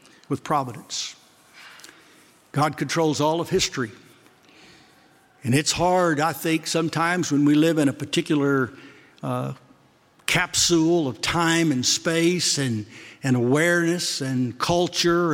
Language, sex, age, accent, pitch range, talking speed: English, male, 60-79, American, 140-170 Hz, 115 wpm